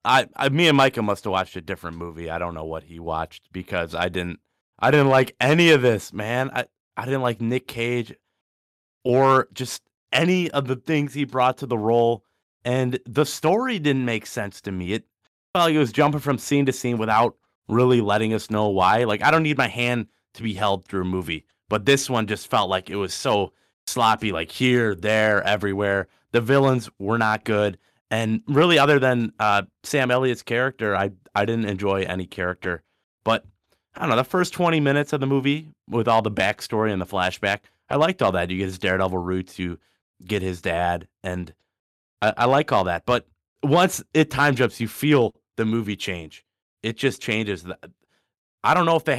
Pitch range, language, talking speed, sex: 95-130 Hz, English, 205 wpm, male